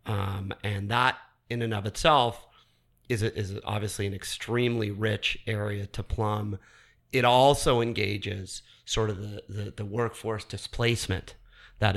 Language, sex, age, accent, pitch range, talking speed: English, male, 30-49, American, 105-115 Hz, 140 wpm